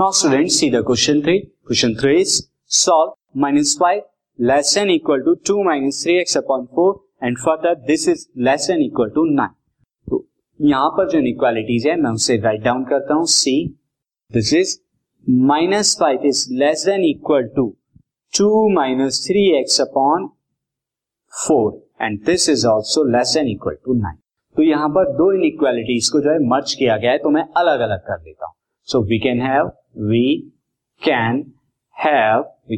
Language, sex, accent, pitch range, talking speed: Hindi, male, native, 125-180 Hz, 115 wpm